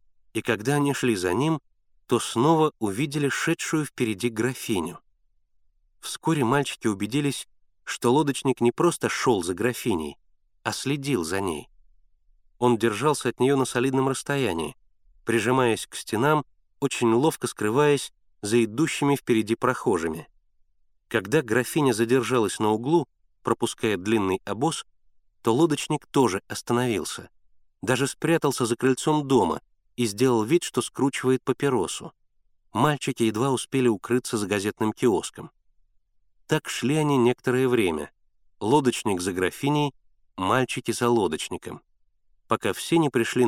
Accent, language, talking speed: native, Russian, 120 wpm